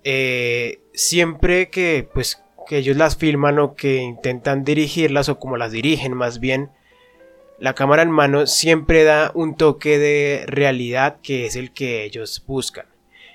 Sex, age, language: male, 20-39, Spanish